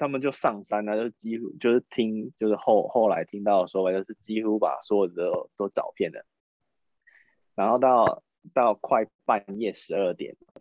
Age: 20-39